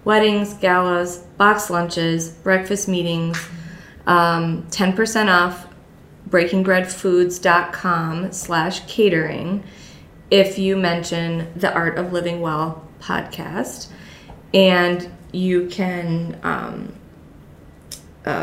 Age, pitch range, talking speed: 20-39, 175-200 Hz, 85 wpm